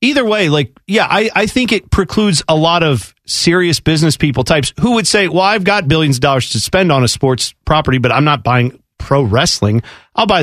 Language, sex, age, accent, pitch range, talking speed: English, male, 40-59, American, 125-170 Hz, 225 wpm